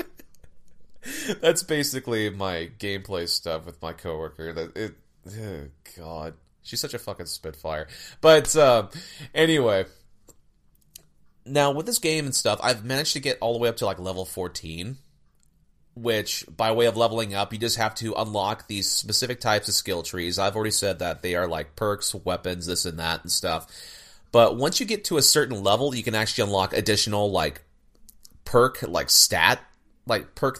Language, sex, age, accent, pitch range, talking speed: English, male, 30-49, American, 90-120 Hz, 175 wpm